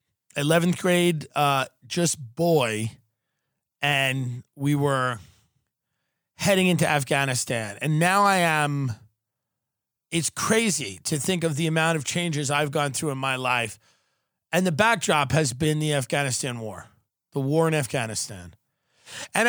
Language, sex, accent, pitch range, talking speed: English, male, American, 145-195 Hz, 130 wpm